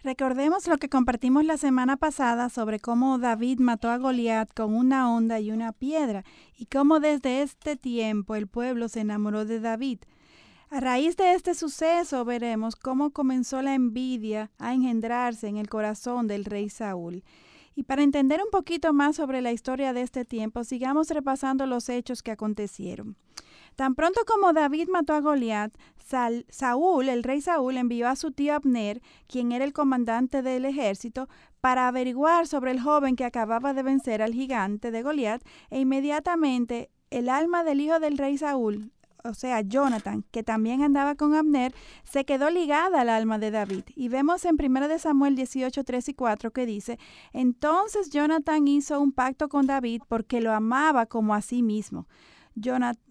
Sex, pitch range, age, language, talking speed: female, 230-285 Hz, 30-49, Spanish, 170 wpm